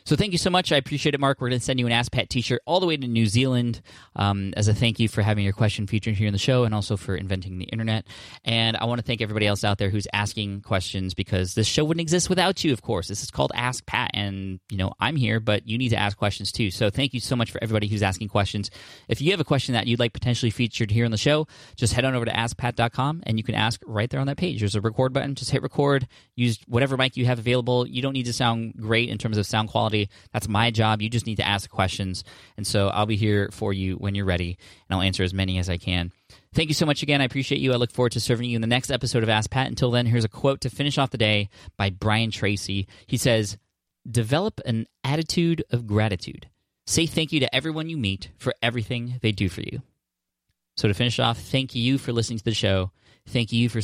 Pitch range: 100-125 Hz